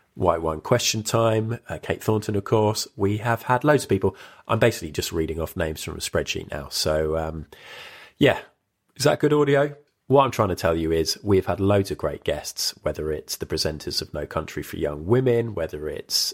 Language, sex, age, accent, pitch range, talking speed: English, male, 30-49, British, 80-115 Hz, 210 wpm